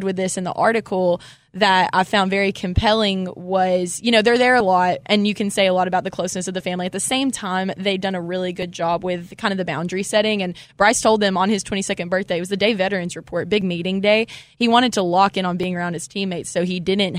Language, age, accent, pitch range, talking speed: English, 20-39, American, 180-215 Hz, 260 wpm